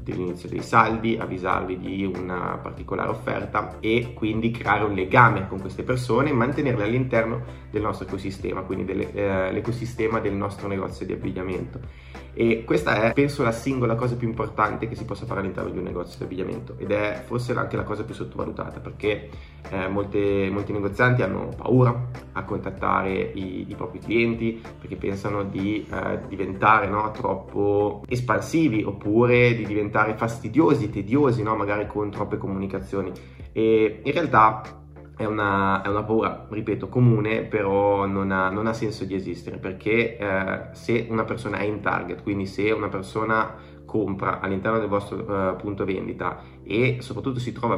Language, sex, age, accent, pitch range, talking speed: Italian, male, 20-39, native, 95-115 Hz, 160 wpm